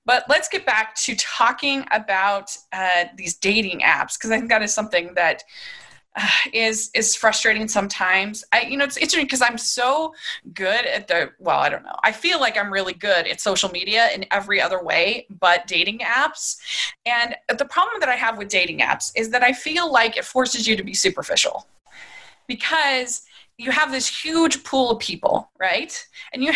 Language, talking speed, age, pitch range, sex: English, 190 wpm, 20-39, 215-305 Hz, female